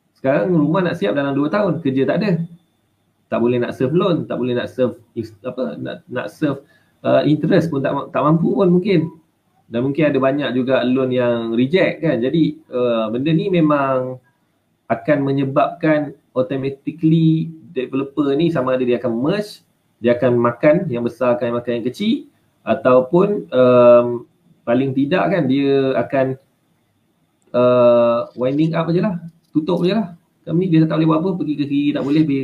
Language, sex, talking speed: Malay, male, 170 wpm